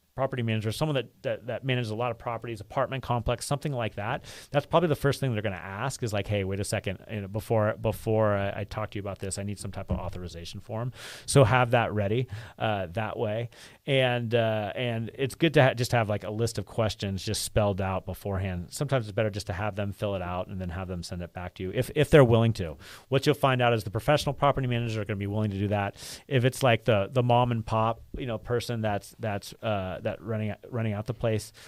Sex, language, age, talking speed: male, English, 30-49, 250 wpm